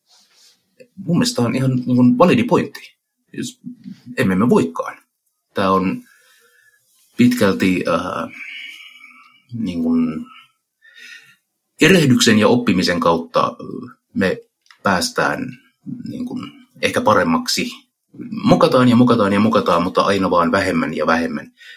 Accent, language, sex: native, Finnish, male